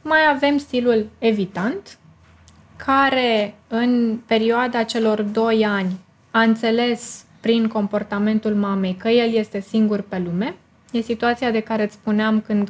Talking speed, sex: 130 wpm, female